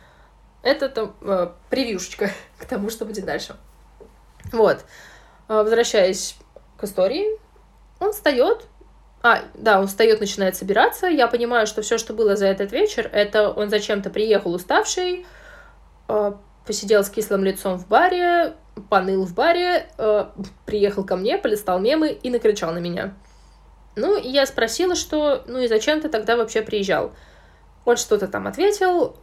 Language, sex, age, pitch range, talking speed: Russian, female, 20-39, 195-270 Hz, 150 wpm